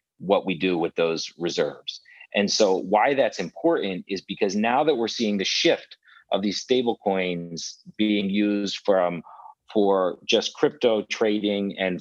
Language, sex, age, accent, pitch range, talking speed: English, male, 40-59, American, 90-105 Hz, 155 wpm